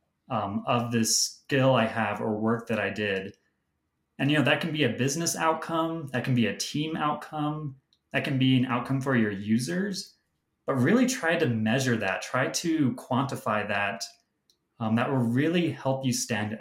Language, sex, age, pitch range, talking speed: English, male, 20-39, 115-140 Hz, 185 wpm